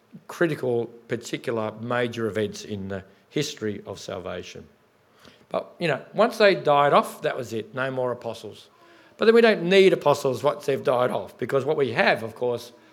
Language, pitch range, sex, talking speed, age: English, 115-150 Hz, male, 175 wpm, 50-69